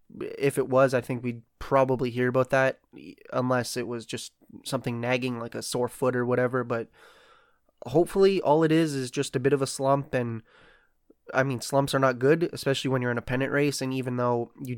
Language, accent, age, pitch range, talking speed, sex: English, American, 20-39, 125-140 Hz, 210 wpm, male